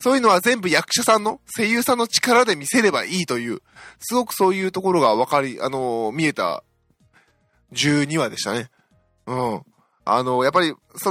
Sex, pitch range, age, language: male, 135-205 Hz, 20-39, Japanese